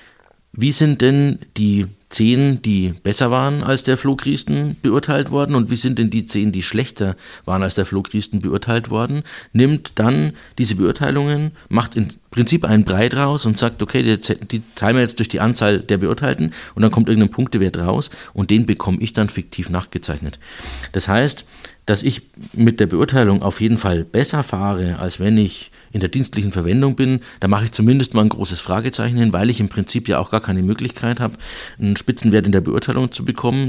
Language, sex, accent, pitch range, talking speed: German, male, German, 95-120 Hz, 190 wpm